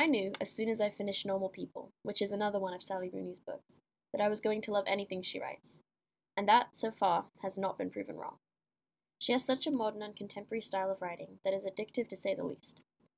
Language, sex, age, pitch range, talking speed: English, female, 10-29, 190-225 Hz, 235 wpm